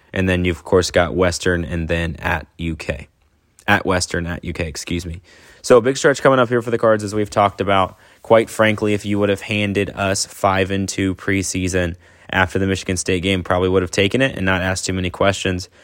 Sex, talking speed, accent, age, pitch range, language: male, 225 wpm, American, 20-39, 90-100 Hz, English